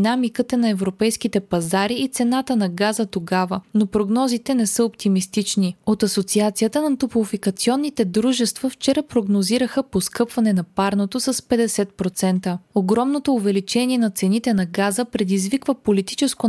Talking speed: 120 wpm